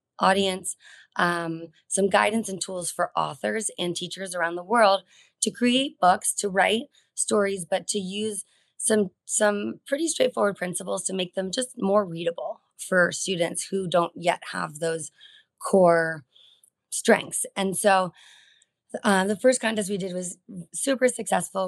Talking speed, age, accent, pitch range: 145 wpm, 20-39, American, 175-210 Hz